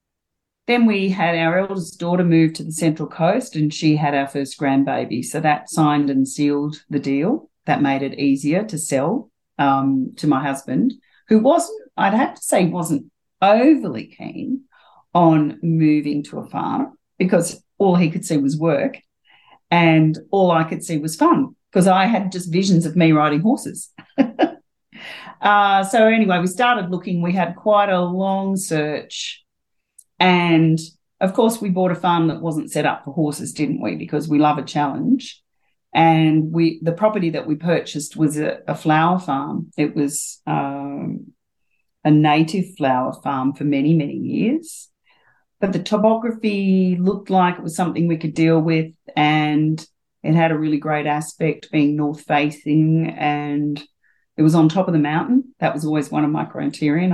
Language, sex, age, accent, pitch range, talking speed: English, female, 40-59, Australian, 150-190 Hz, 170 wpm